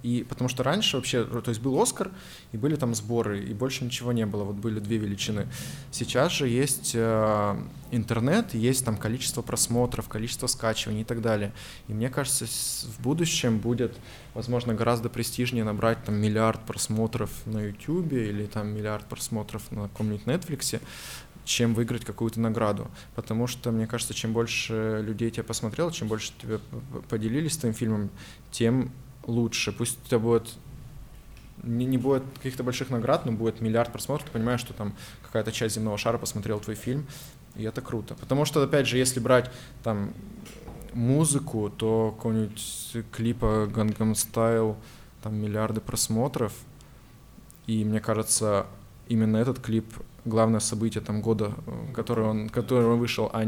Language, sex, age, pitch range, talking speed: Russian, male, 20-39, 110-125 Hz, 160 wpm